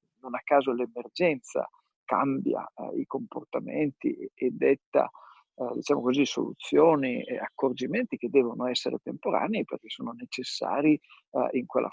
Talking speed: 130 wpm